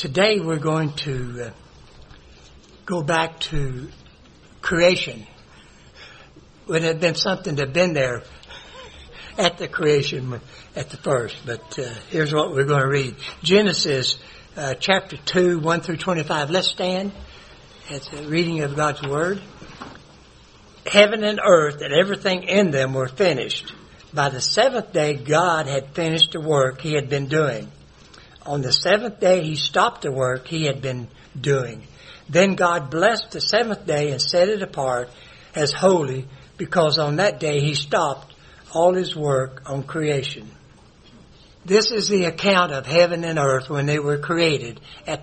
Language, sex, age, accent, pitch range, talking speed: English, male, 60-79, American, 140-180 Hz, 150 wpm